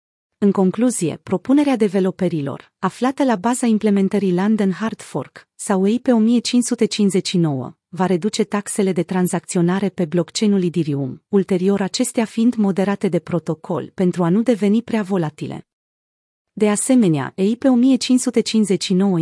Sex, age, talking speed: female, 30-49, 120 wpm